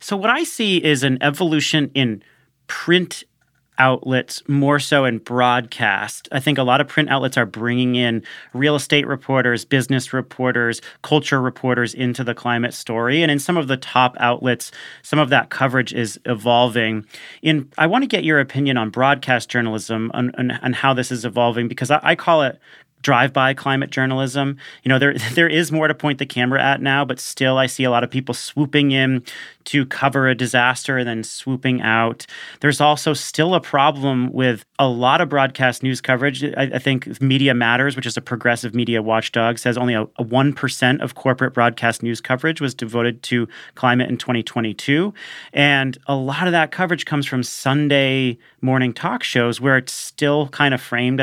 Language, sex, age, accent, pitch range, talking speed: English, male, 40-59, American, 120-145 Hz, 185 wpm